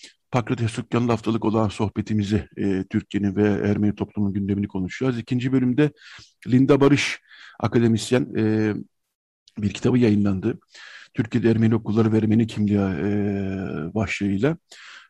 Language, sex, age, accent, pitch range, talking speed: Turkish, male, 50-69, native, 105-125 Hz, 110 wpm